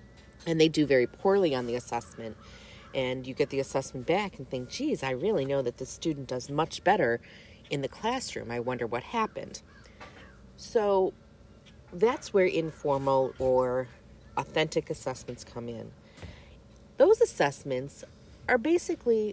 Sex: female